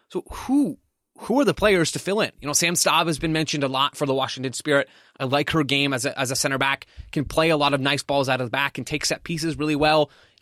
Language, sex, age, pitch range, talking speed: English, male, 20-39, 135-165 Hz, 290 wpm